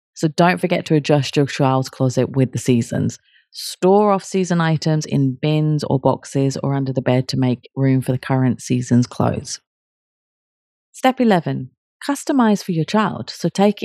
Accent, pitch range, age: British, 135-190 Hz, 30-49